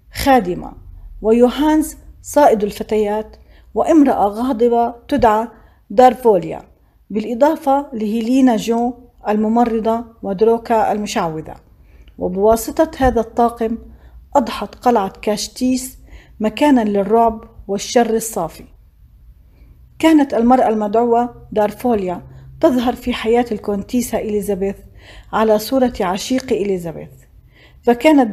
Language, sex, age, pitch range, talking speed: Arabic, female, 40-59, 205-245 Hz, 80 wpm